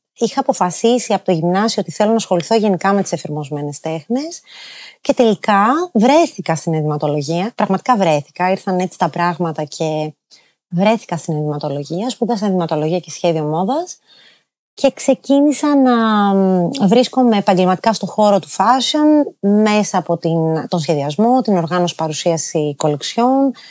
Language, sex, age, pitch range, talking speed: Greek, female, 30-49, 165-225 Hz, 130 wpm